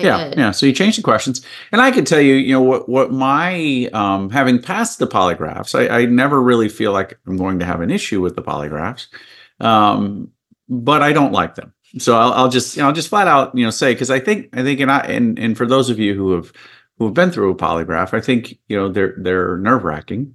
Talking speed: 250 wpm